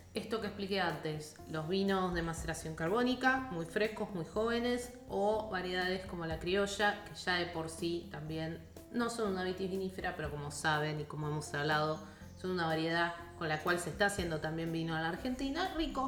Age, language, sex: 20-39, Spanish, female